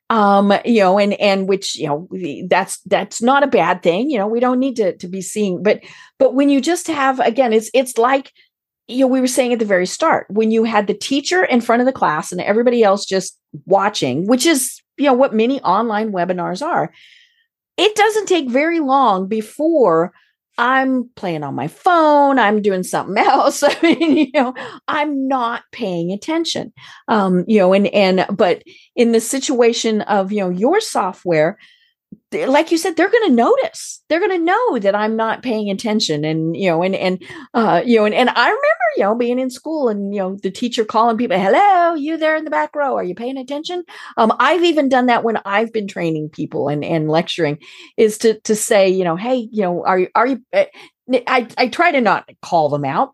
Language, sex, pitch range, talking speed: English, female, 195-285 Hz, 210 wpm